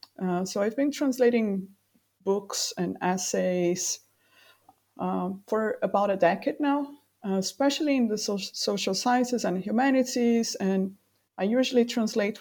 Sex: female